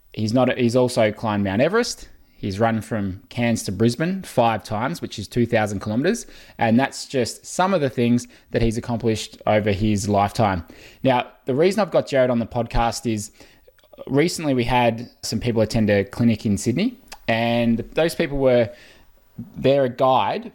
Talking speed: 170 wpm